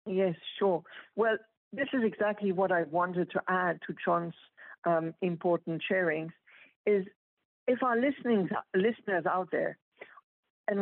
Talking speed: 130 wpm